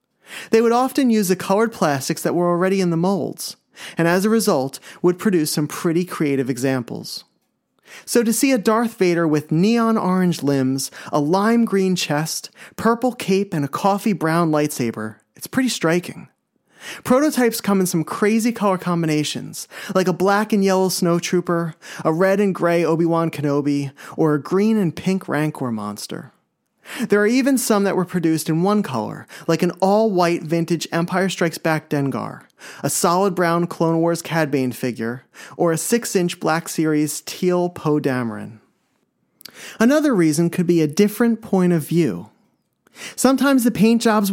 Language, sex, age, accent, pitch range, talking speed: English, male, 30-49, American, 155-205 Hz, 160 wpm